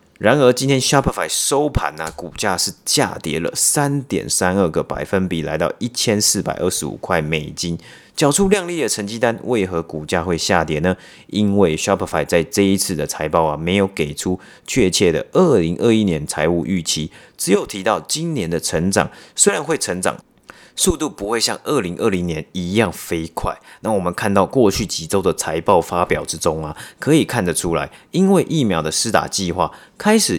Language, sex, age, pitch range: Chinese, male, 30-49, 85-130 Hz